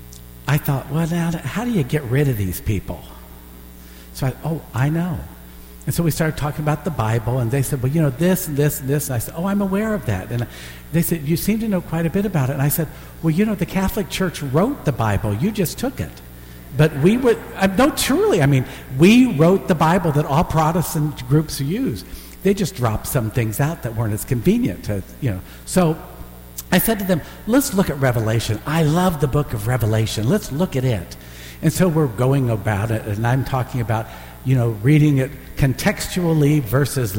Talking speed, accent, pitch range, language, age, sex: 220 wpm, American, 110-160 Hz, English, 50-69, male